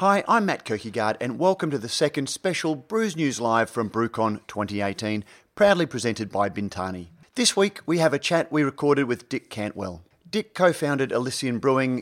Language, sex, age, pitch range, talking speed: English, male, 30-49, 110-155 Hz, 180 wpm